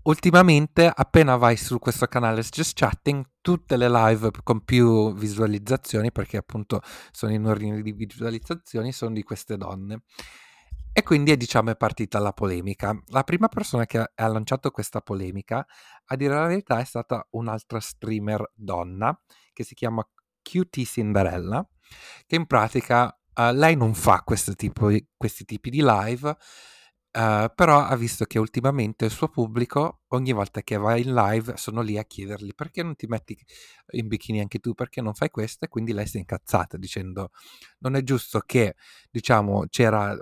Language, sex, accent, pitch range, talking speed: Italian, male, native, 105-125 Hz, 165 wpm